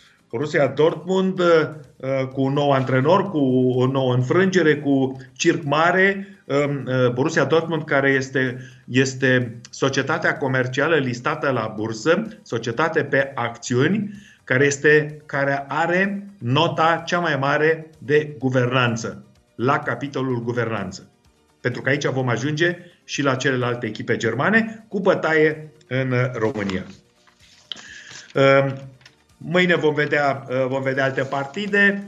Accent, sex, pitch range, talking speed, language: native, male, 130-160 Hz, 110 wpm, Romanian